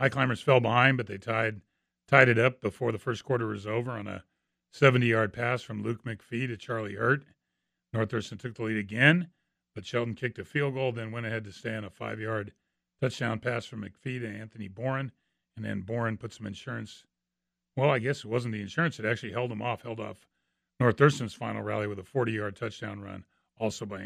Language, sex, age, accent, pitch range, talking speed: English, male, 40-59, American, 105-125 Hz, 210 wpm